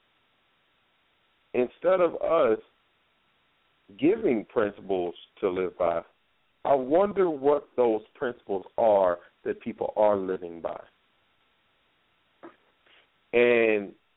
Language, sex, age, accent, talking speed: English, male, 50-69, American, 85 wpm